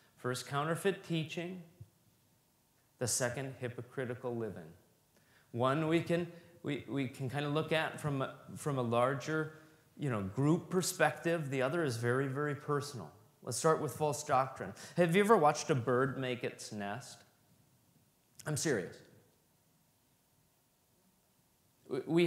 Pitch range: 125-170 Hz